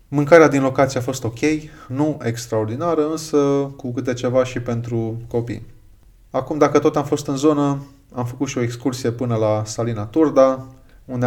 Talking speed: 170 wpm